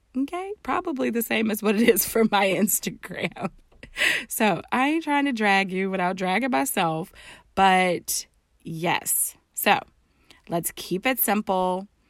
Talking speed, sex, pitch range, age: 140 wpm, female, 170-235 Hz, 20-39